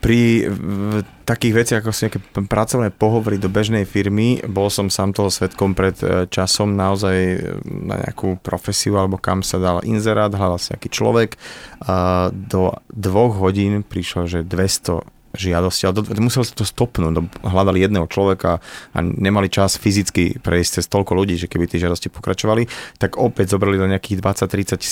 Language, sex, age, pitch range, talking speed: Slovak, male, 30-49, 95-115 Hz, 165 wpm